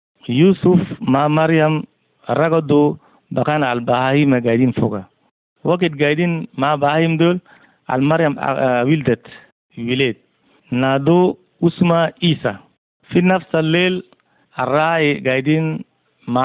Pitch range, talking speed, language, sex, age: 130-160 Hz, 95 wpm, Arabic, male, 50-69